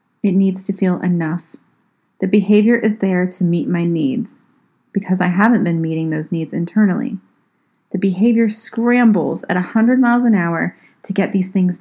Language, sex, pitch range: English, female, 175-215 Hz